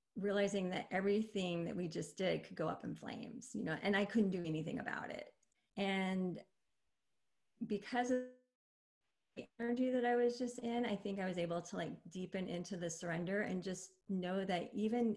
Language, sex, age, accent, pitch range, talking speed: English, female, 30-49, American, 185-230 Hz, 185 wpm